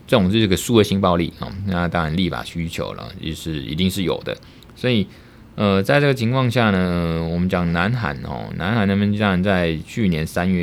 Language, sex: Chinese, male